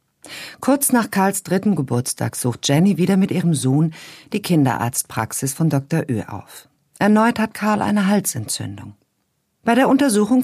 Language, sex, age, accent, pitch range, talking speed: German, female, 50-69, German, 130-205 Hz, 145 wpm